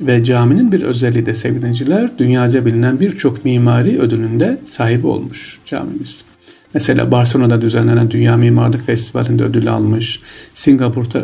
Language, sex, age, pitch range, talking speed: Turkish, male, 50-69, 115-140 Hz, 125 wpm